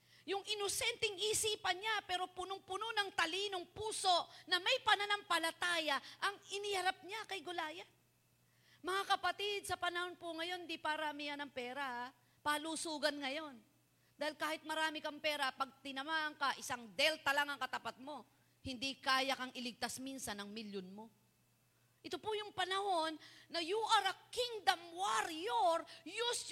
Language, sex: Filipino, female